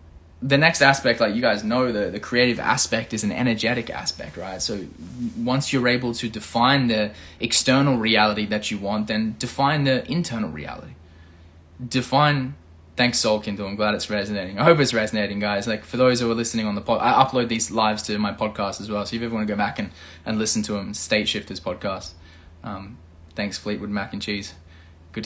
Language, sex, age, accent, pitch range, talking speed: English, male, 20-39, Australian, 100-125 Hz, 205 wpm